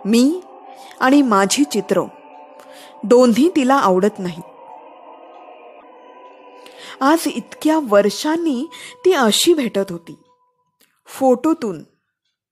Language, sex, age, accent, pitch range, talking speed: Marathi, female, 20-39, native, 205-315 Hz, 75 wpm